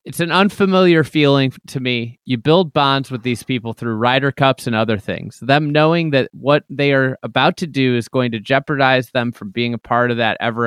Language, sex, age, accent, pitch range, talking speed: English, male, 30-49, American, 125-165 Hz, 220 wpm